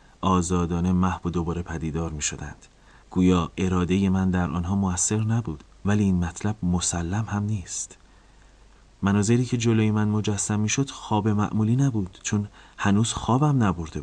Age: 30-49